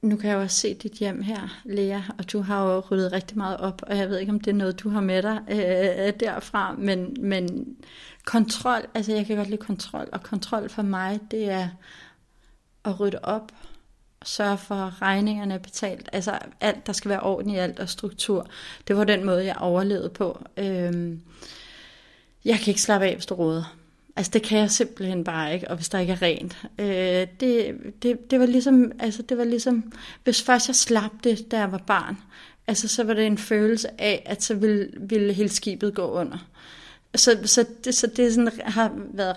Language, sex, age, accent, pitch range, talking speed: Danish, female, 30-49, native, 190-225 Hz, 205 wpm